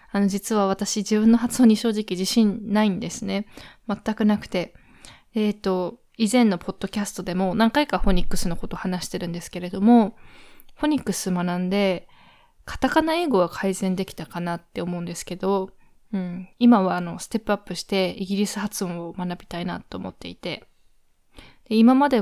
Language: Japanese